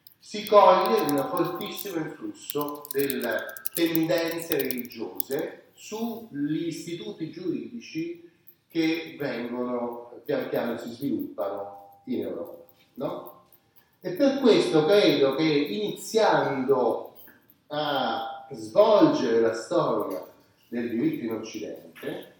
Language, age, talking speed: Italian, 30-49, 90 wpm